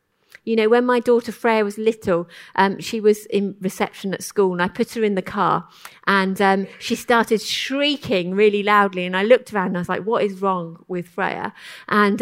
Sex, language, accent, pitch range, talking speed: female, English, British, 190-240 Hz, 210 wpm